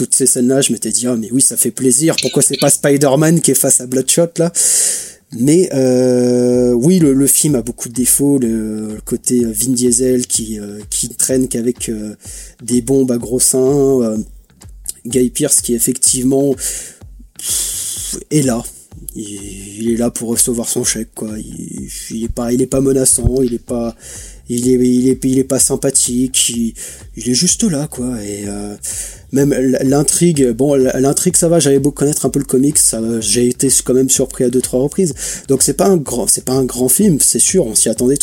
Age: 30-49